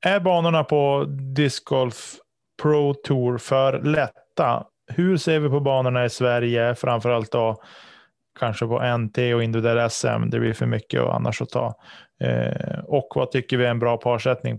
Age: 20-39